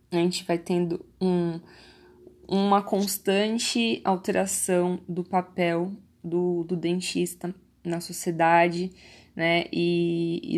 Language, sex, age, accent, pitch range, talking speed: Portuguese, female, 20-39, Brazilian, 170-195 Hz, 100 wpm